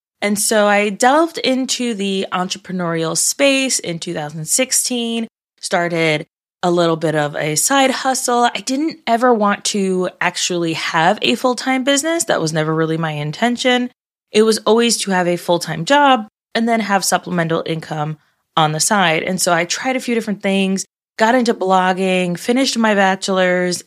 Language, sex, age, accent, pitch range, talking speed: English, female, 20-39, American, 175-240 Hz, 160 wpm